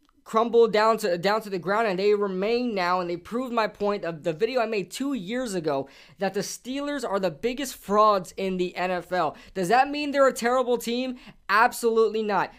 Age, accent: 20-39, American